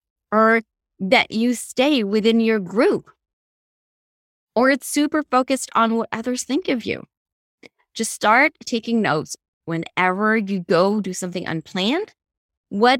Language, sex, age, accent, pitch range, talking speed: English, female, 20-39, American, 190-245 Hz, 130 wpm